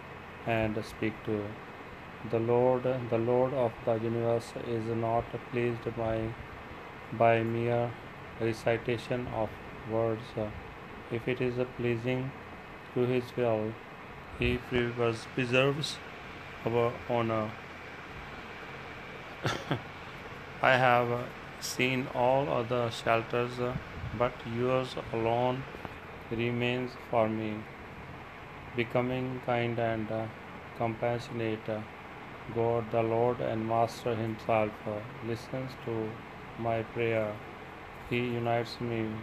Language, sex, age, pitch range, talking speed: Punjabi, male, 40-59, 110-120 Hz, 95 wpm